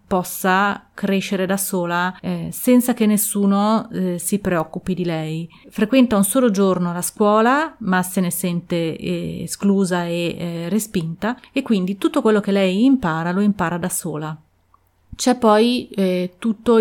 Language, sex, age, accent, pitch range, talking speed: Italian, female, 30-49, native, 185-215 Hz, 155 wpm